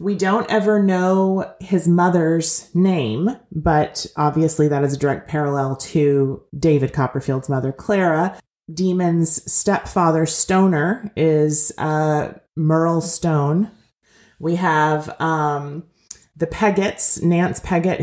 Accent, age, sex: American, 30-49, female